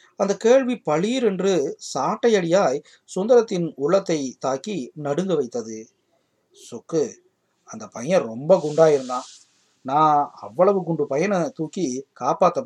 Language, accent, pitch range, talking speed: Tamil, native, 140-195 Hz, 100 wpm